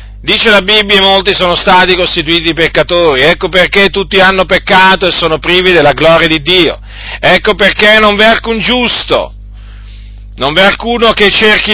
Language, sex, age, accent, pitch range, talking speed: Italian, male, 40-59, native, 140-205 Hz, 165 wpm